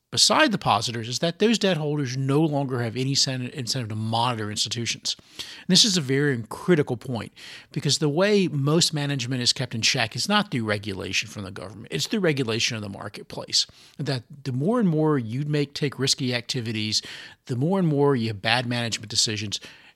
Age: 40-59